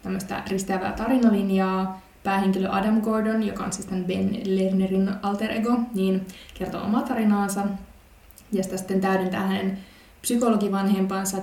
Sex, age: female, 20-39